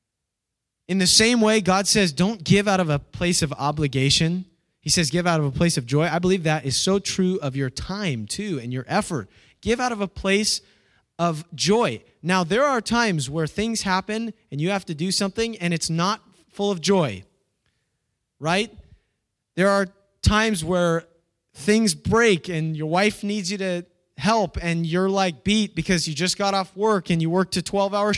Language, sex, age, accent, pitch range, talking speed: English, male, 20-39, American, 155-200 Hz, 195 wpm